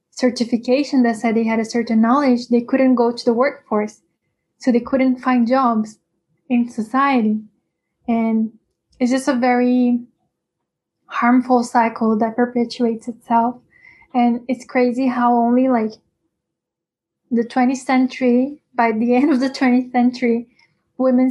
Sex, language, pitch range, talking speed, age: female, English, 220-250 Hz, 135 wpm, 10-29